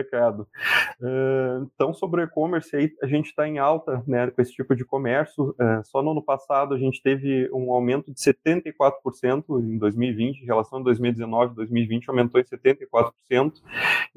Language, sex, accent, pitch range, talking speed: Portuguese, male, Brazilian, 125-155 Hz, 170 wpm